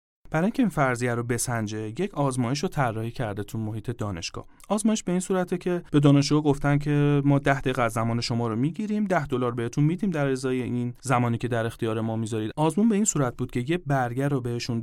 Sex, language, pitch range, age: male, Persian, 120-170 Hz, 40-59